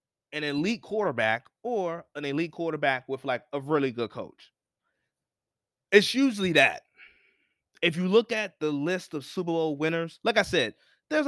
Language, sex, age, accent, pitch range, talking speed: English, male, 20-39, American, 130-185 Hz, 160 wpm